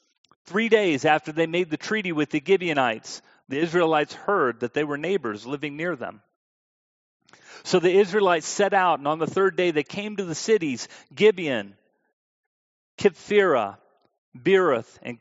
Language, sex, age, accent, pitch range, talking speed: English, male, 40-59, American, 150-195 Hz, 155 wpm